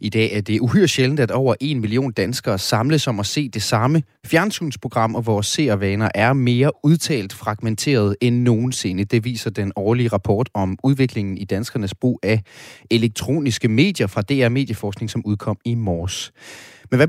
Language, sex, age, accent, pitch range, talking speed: Danish, male, 30-49, native, 105-130 Hz, 170 wpm